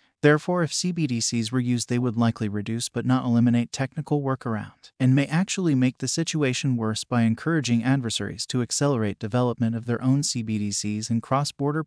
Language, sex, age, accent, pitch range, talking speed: English, male, 30-49, American, 115-140 Hz, 165 wpm